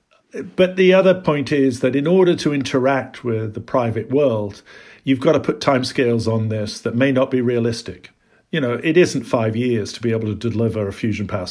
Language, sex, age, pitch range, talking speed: English, male, 50-69, 115-135 Hz, 210 wpm